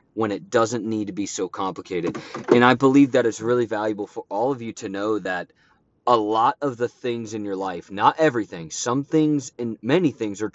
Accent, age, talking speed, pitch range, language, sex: American, 30-49, 215 wpm, 110-140 Hz, English, male